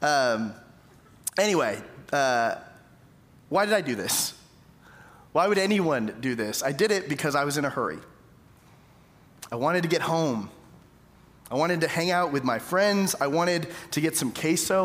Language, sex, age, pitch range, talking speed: English, male, 30-49, 140-180 Hz, 165 wpm